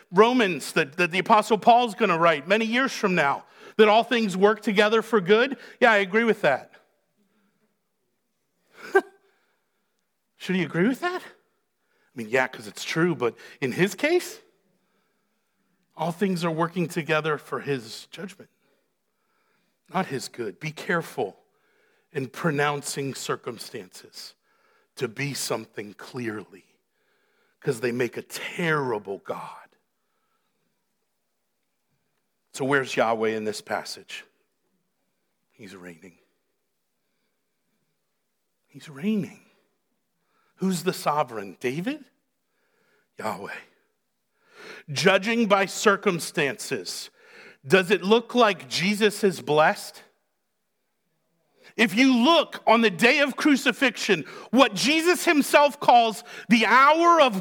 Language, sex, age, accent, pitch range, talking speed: English, male, 50-69, American, 170-245 Hz, 110 wpm